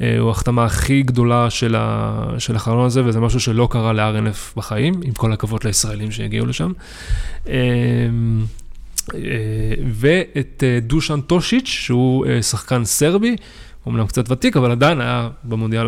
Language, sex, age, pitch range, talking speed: Hebrew, male, 20-39, 110-130 Hz, 120 wpm